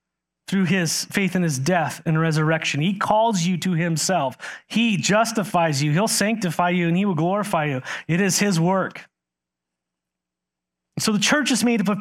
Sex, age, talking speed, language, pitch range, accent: male, 30-49, 175 wpm, English, 145-205 Hz, American